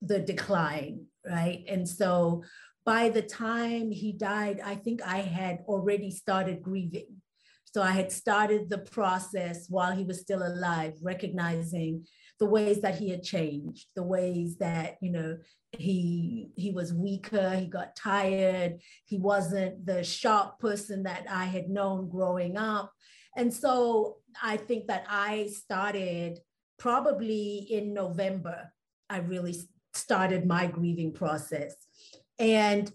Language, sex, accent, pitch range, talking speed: English, female, American, 180-215 Hz, 135 wpm